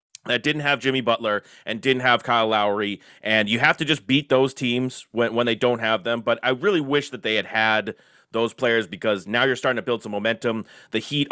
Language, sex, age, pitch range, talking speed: English, male, 30-49, 115-140 Hz, 235 wpm